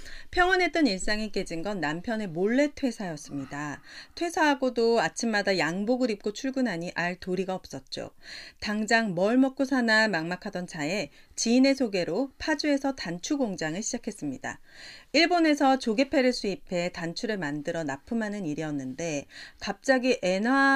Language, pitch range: Korean, 180-270 Hz